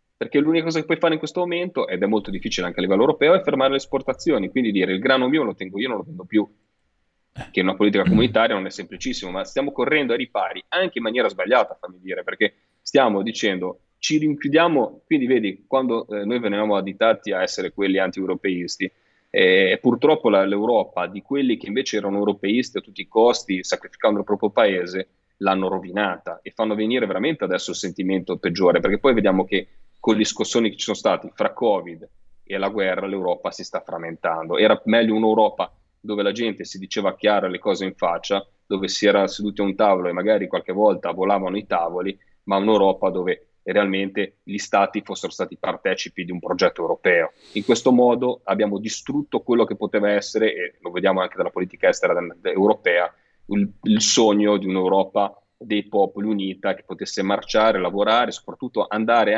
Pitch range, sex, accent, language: 95-145 Hz, male, native, Italian